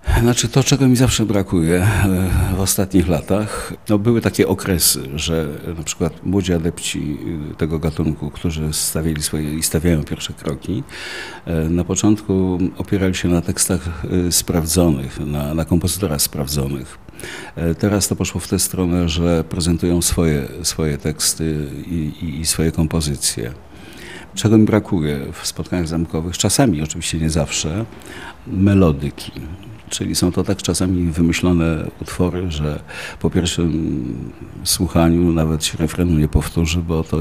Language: Polish